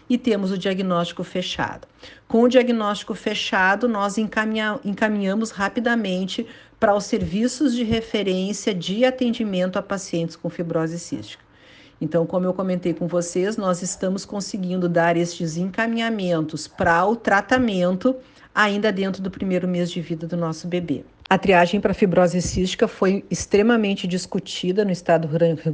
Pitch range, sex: 175-210 Hz, female